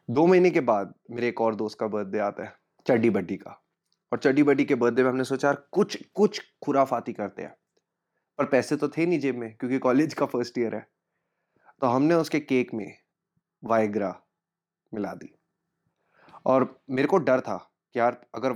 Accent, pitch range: native, 115-140 Hz